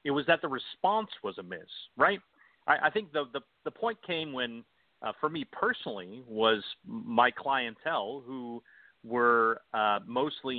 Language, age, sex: English, 40-59, male